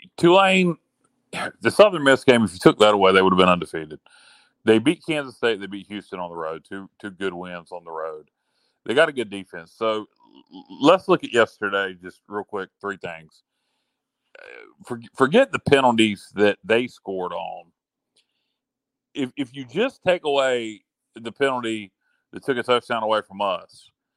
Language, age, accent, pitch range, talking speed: English, 40-59, American, 95-135 Hz, 175 wpm